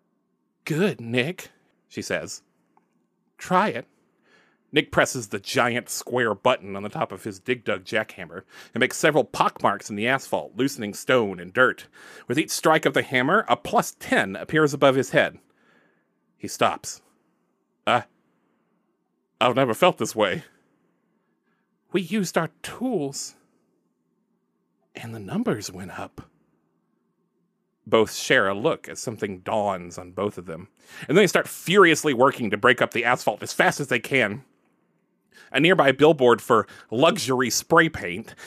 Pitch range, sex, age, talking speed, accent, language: 105-140 Hz, male, 40-59, 150 wpm, American, English